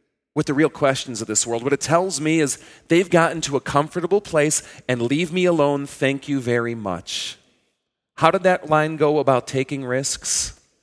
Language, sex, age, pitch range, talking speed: English, male, 40-59, 115-150 Hz, 190 wpm